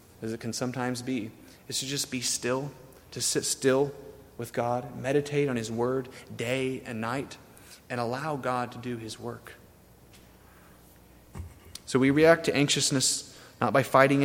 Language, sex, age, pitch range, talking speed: English, male, 30-49, 110-135 Hz, 155 wpm